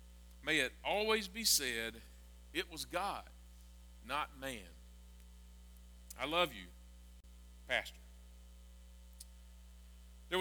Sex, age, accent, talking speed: male, 40-59, American, 85 wpm